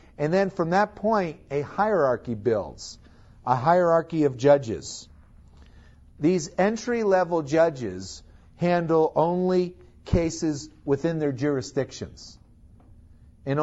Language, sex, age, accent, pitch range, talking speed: English, male, 50-69, American, 130-175 Hz, 95 wpm